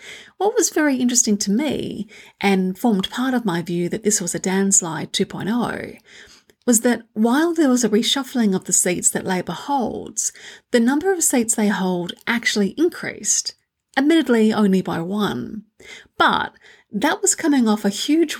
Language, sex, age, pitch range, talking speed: English, female, 30-49, 190-245 Hz, 165 wpm